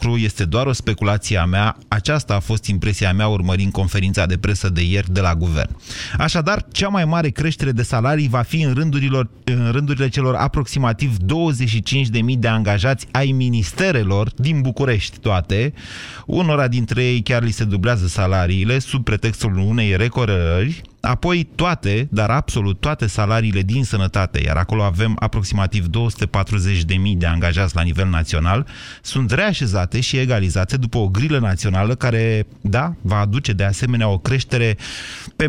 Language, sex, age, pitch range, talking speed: Romanian, male, 30-49, 105-145 Hz, 150 wpm